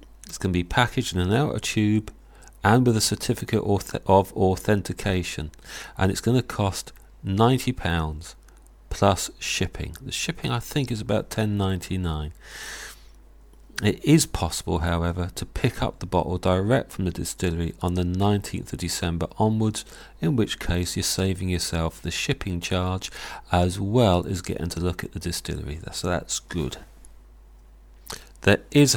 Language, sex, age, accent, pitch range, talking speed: English, male, 40-59, British, 85-105 Hz, 150 wpm